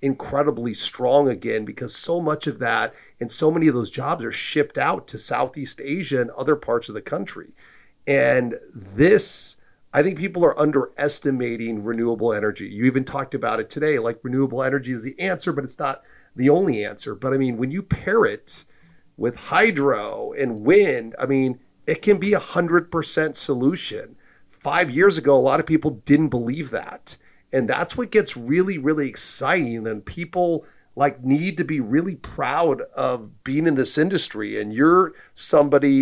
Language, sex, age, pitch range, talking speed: English, male, 40-59, 130-155 Hz, 175 wpm